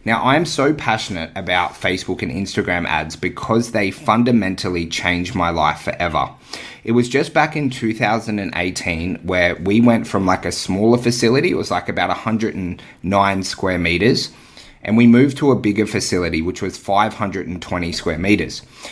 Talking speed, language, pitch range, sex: 155 wpm, English, 90-115 Hz, male